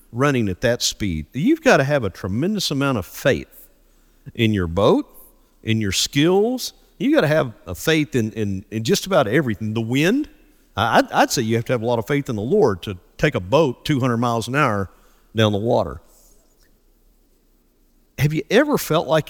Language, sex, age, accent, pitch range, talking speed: English, male, 50-69, American, 110-155 Hz, 195 wpm